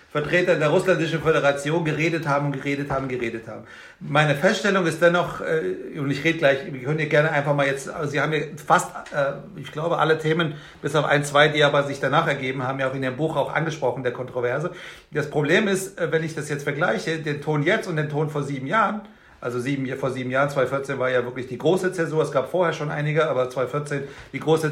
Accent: German